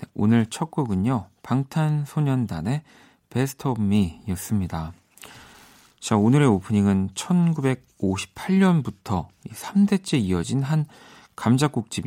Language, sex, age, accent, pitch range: Korean, male, 40-59, native, 95-130 Hz